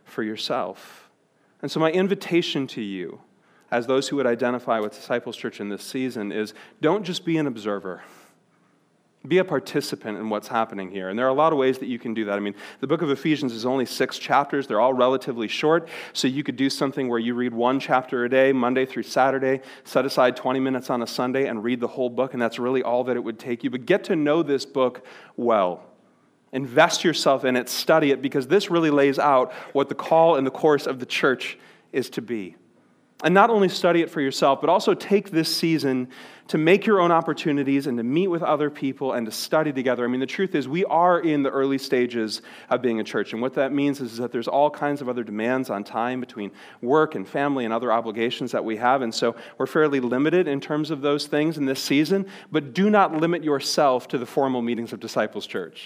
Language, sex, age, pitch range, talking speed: English, male, 30-49, 120-155 Hz, 230 wpm